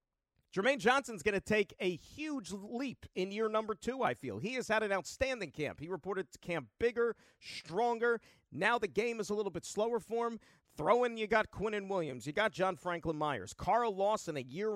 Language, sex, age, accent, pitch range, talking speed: English, male, 40-59, American, 155-215 Hz, 210 wpm